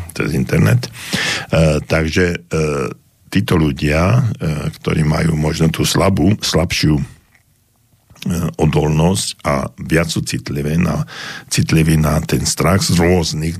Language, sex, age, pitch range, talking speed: Slovak, male, 60-79, 75-85 Hz, 110 wpm